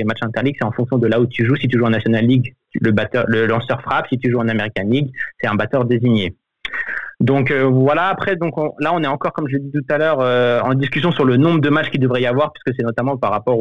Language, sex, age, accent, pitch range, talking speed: French, male, 20-39, French, 120-145 Hz, 285 wpm